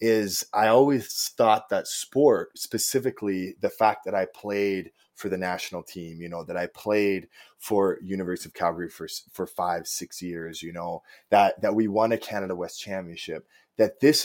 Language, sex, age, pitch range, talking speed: English, male, 20-39, 95-145 Hz, 175 wpm